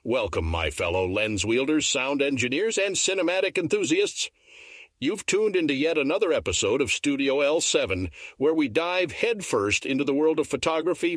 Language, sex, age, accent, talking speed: English, male, 60-79, American, 150 wpm